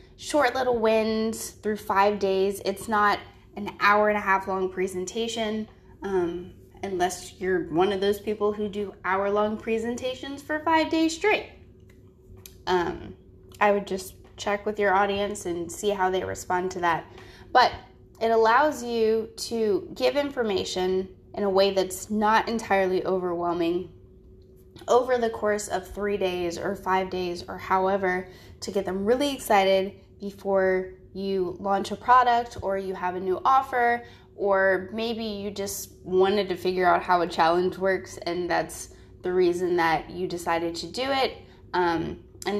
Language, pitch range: English, 175-215 Hz